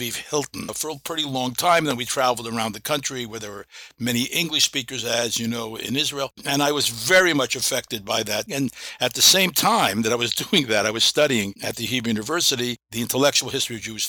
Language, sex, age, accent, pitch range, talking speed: English, male, 60-79, American, 115-140 Hz, 225 wpm